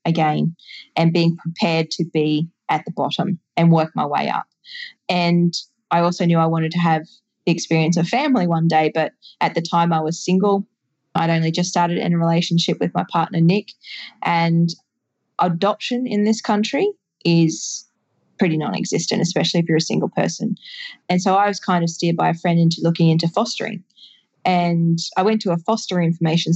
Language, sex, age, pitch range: English, female, 10-29, 165-200 Hz